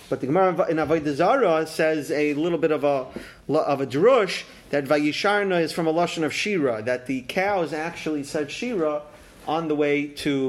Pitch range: 135-175 Hz